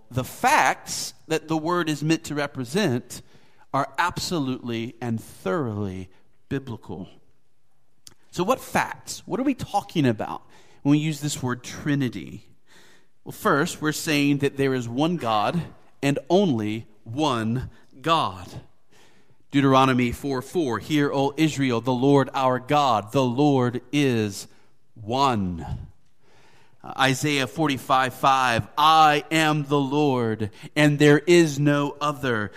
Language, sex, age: English, male, 40-59